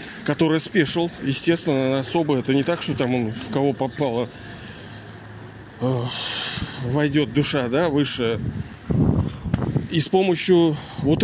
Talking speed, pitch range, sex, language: 110 wpm, 130-175 Hz, male, Russian